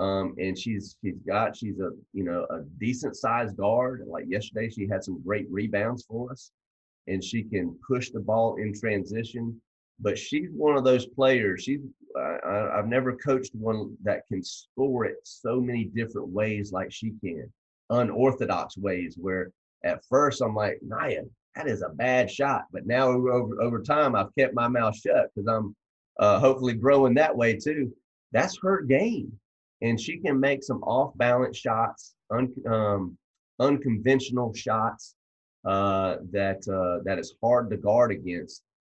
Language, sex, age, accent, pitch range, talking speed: English, male, 30-49, American, 95-125 Hz, 165 wpm